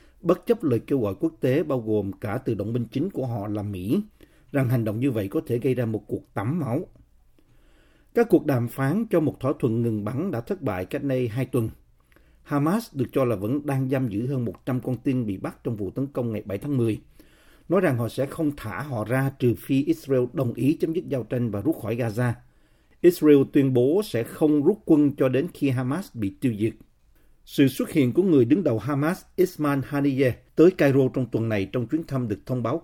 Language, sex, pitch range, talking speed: Vietnamese, male, 115-150 Hz, 230 wpm